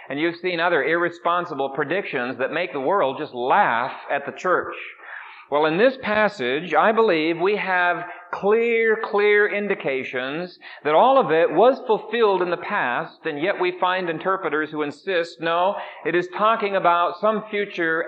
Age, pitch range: 40-59, 150-210 Hz